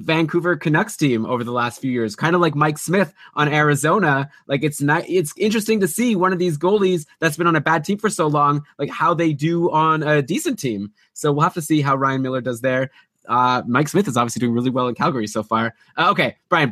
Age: 20-39